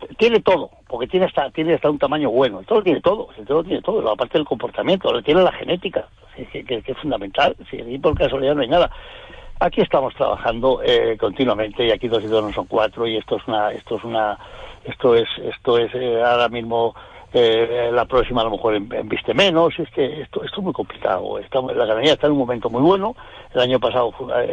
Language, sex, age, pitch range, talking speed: Spanish, male, 60-79, 125-190 Hz, 230 wpm